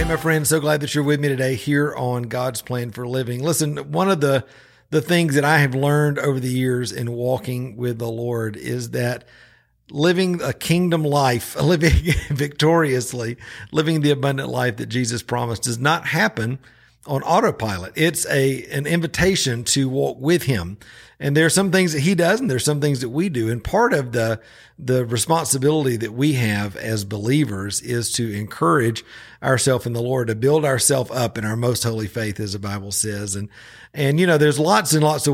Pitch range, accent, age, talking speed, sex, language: 115-145 Hz, American, 50-69, 200 wpm, male, English